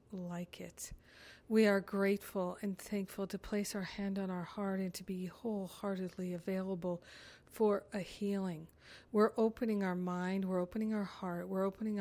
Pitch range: 185-210 Hz